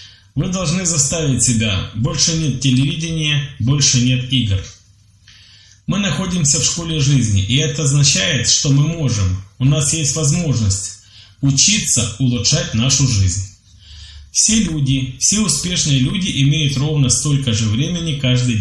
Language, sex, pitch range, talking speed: Polish, male, 105-155 Hz, 130 wpm